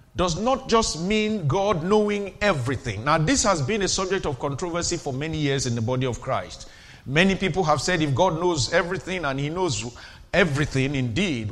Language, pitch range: English, 135-190 Hz